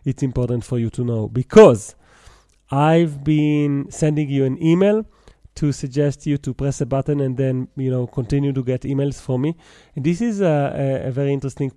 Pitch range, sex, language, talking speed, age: 130-150 Hz, male, English, 195 wpm, 30-49